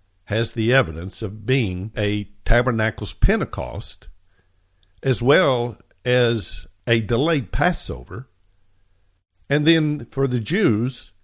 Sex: male